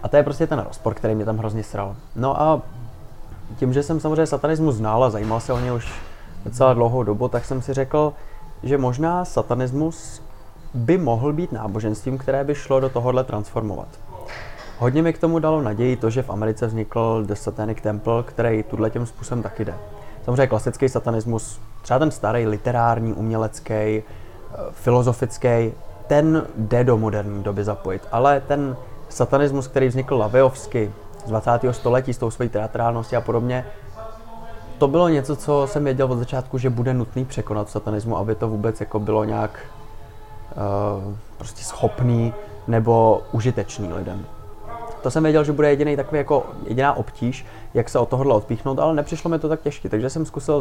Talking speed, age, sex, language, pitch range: 170 wpm, 20-39, male, Czech, 110-135 Hz